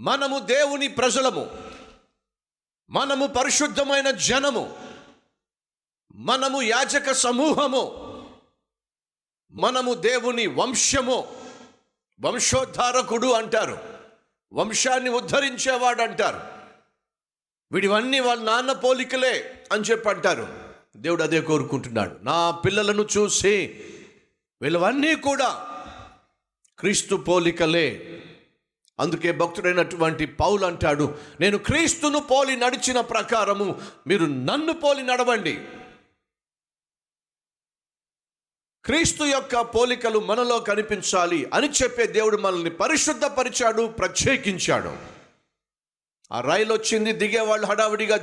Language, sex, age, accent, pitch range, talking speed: Telugu, male, 50-69, native, 200-255 Hz, 80 wpm